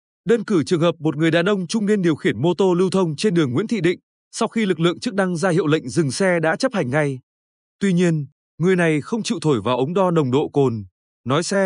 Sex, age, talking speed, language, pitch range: male, 20-39, 260 wpm, Vietnamese, 150-190 Hz